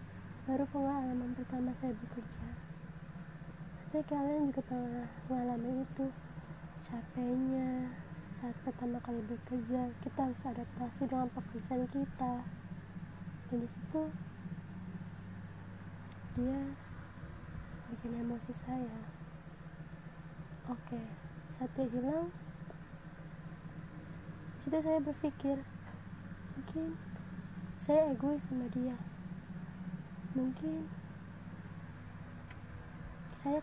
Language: Indonesian